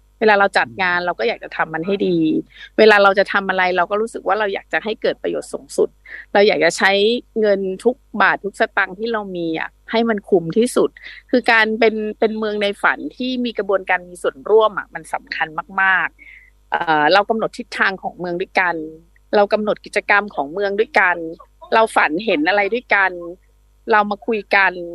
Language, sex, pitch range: English, female, 185-235 Hz